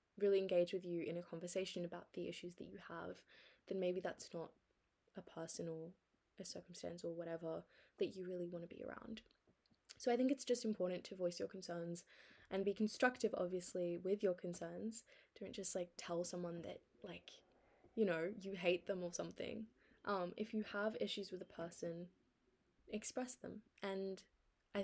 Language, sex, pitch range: English, female, 175-210 Hz